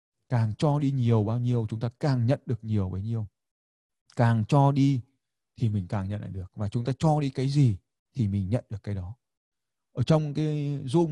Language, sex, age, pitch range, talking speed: Vietnamese, male, 20-39, 105-135 Hz, 215 wpm